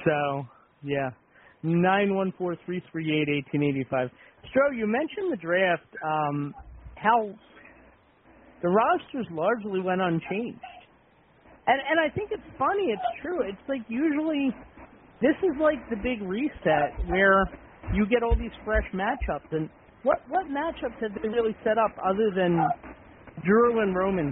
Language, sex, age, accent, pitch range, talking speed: English, male, 50-69, American, 160-220 Hz, 150 wpm